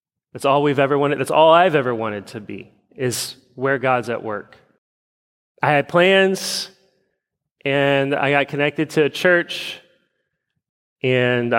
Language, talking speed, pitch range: English, 145 wpm, 110-140 Hz